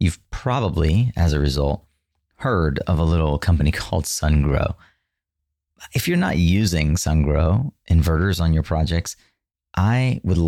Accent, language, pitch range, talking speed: American, English, 80-110 Hz, 130 wpm